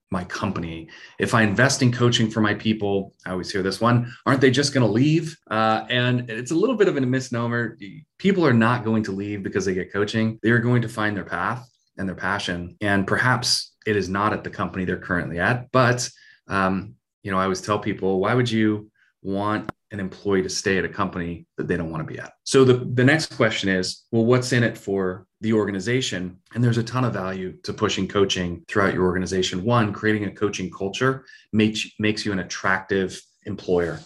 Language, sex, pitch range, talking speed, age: English, male, 95-115 Hz, 215 wpm, 30-49